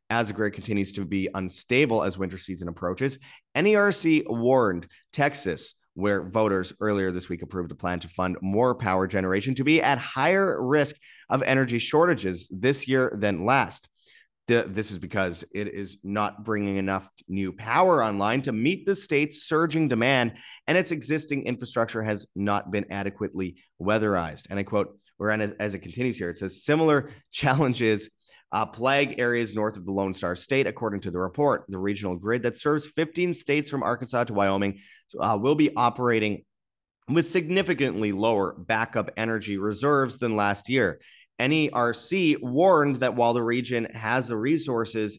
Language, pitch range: English, 100-130 Hz